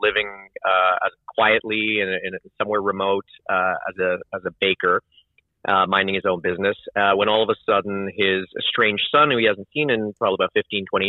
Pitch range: 95-110 Hz